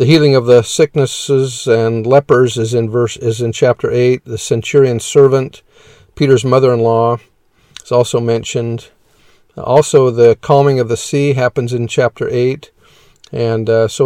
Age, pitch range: 50-69, 115-140 Hz